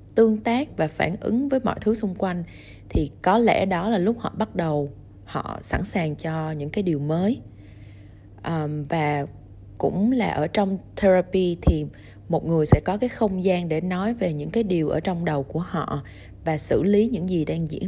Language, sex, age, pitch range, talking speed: Vietnamese, female, 20-39, 150-205 Hz, 200 wpm